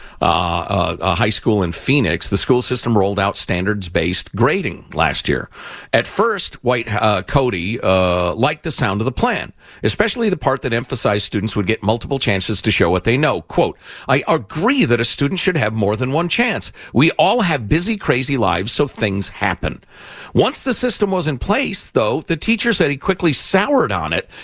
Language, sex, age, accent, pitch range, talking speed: English, male, 50-69, American, 105-175 Hz, 195 wpm